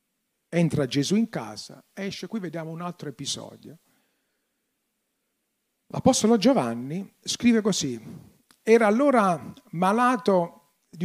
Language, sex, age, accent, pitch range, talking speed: Italian, male, 50-69, native, 150-215 Hz, 90 wpm